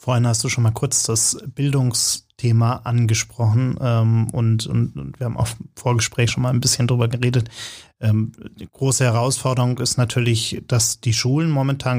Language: German